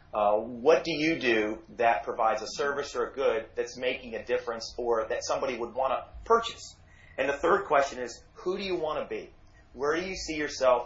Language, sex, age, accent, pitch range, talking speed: English, male, 30-49, American, 110-155 Hz, 215 wpm